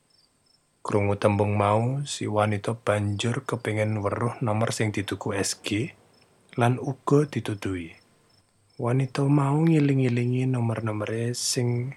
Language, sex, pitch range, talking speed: Indonesian, male, 105-125 Hz, 100 wpm